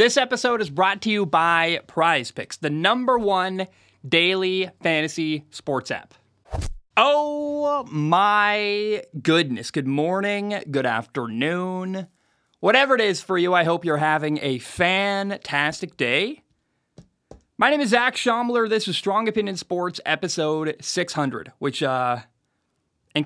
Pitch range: 145-205 Hz